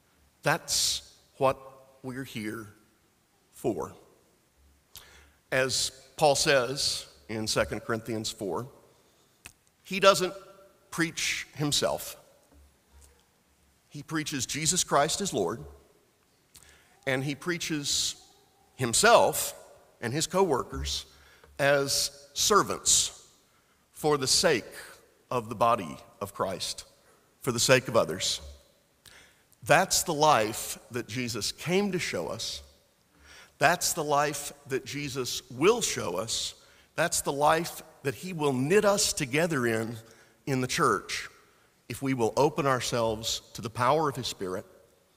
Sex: male